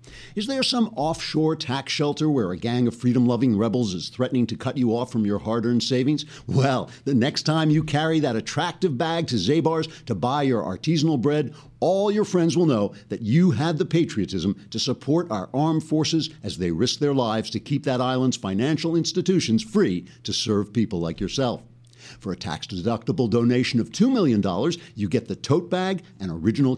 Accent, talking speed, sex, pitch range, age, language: American, 190 wpm, male, 120-160 Hz, 60-79, English